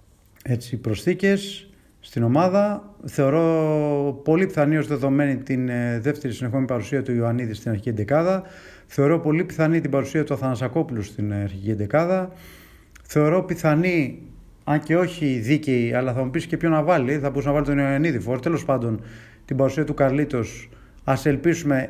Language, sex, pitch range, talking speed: Greek, male, 115-155 Hz, 150 wpm